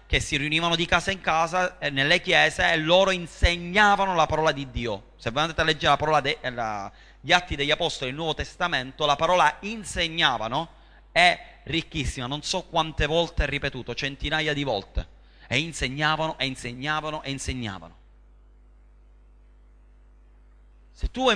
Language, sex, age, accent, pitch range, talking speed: Italian, male, 30-49, native, 105-160 Hz, 150 wpm